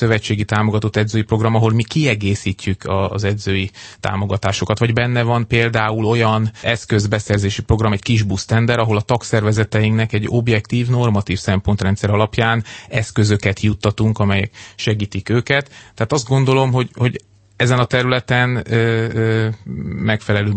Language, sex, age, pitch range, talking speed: Hungarian, male, 30-49, 105-115 Hz, 130 wpm